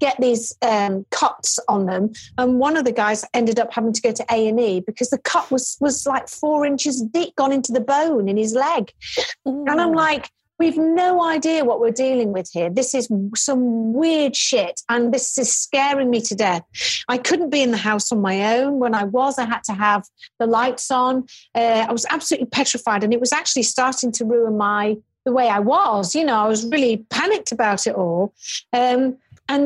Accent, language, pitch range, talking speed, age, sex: British, English, 215-265 Hz, 210 wpm, 40-59, female